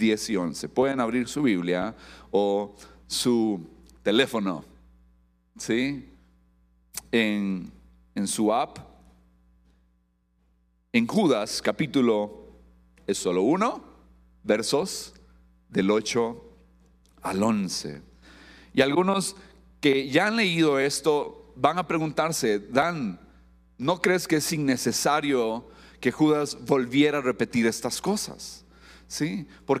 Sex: male